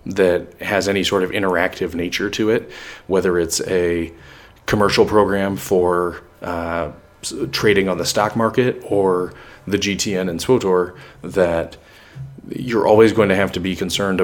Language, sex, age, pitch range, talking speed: English, male, 30-49, 90-110 Hz, 150 wpm